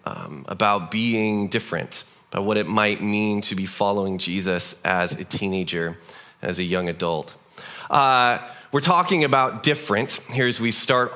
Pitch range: 120-175 Hz